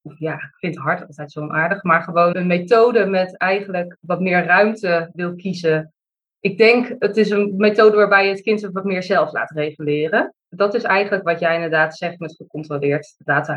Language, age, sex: Dutch, 20-39, female